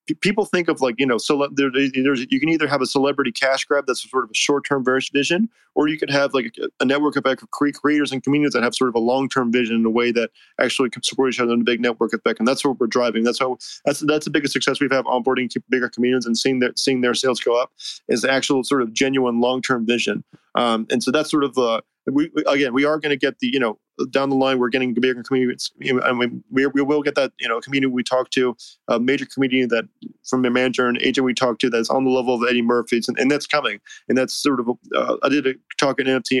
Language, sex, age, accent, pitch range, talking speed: English, male, 20-39, American, 125-140 Hz, 275 wpm